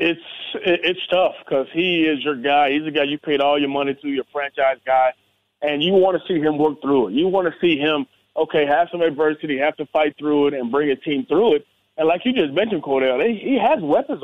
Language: English